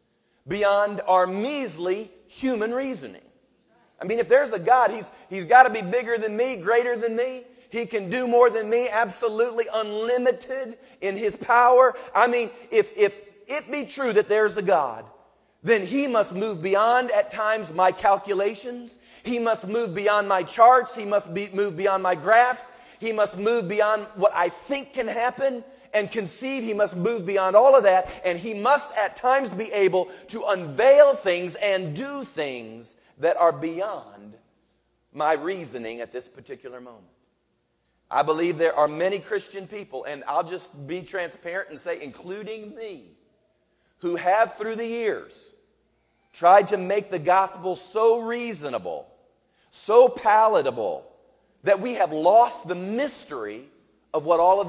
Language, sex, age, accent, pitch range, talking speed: English, male, 40-59, American, 185-245 Hz, 160 wpm